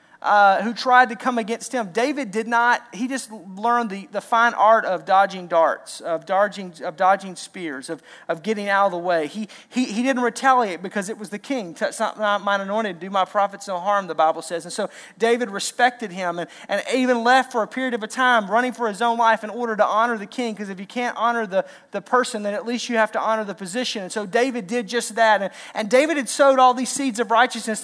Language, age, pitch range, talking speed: English, 40-59, 200-250 Hz, 245 wpm